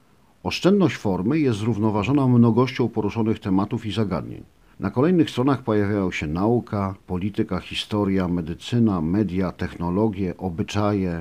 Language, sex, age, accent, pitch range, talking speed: Polish, male, 50-69, native, 95-125 Hz, 110 wpm